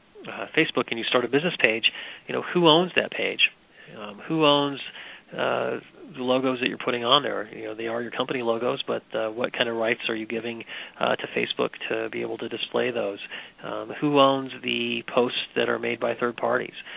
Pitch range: 110-125 Hz